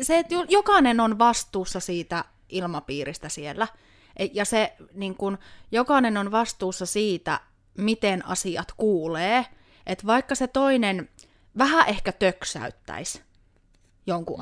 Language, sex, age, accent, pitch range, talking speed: Finnish, female, 30-49, native, 175-265 Hz, 90 wpm